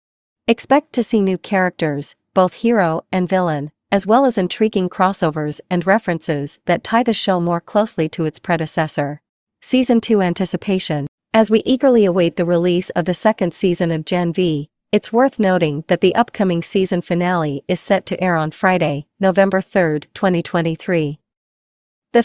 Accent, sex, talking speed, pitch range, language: American, female, 160 wpm, 165-200 Hz, English